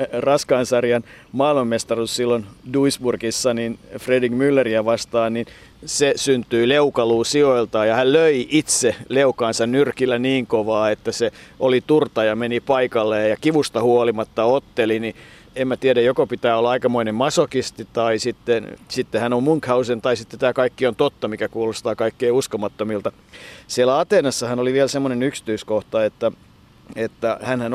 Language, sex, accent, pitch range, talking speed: Finnish, male, native, 110-130 Hz, 145 wpm